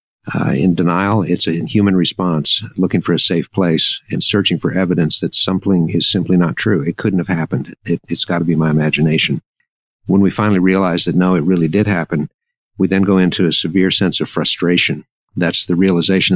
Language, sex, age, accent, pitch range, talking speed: English, male, 50-69, American, 80-95 Hz, 200 wpm